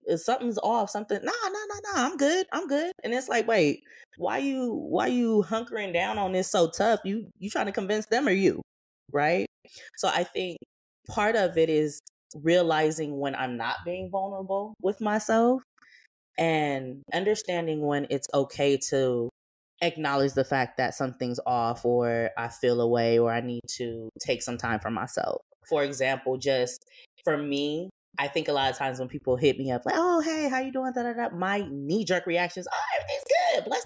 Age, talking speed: 20-39, 190 wpm